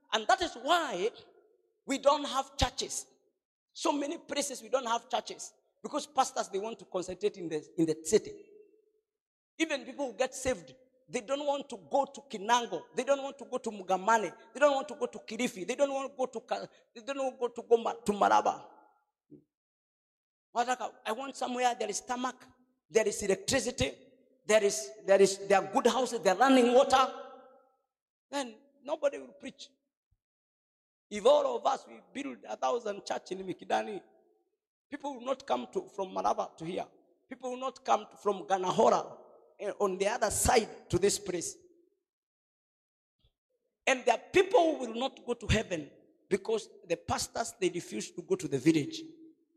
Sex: male